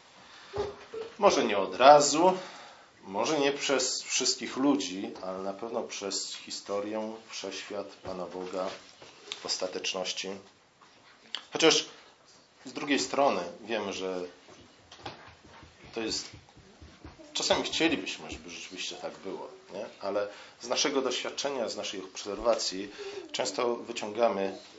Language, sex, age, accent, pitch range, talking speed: Polish, male, 40-59, native, 105-150 Hz, 100 wpm